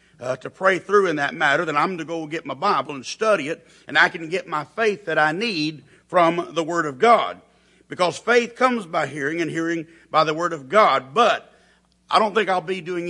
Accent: American